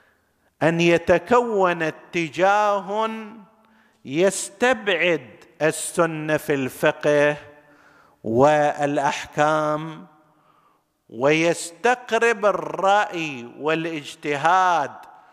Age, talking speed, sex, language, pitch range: 50-69, 45 wpm, male, Arabic, 140-190 Hz